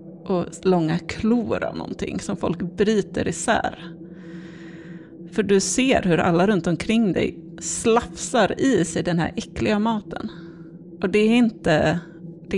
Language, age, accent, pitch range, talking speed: Swedish, 30-49, native, 160-200 Hz, 135 wpm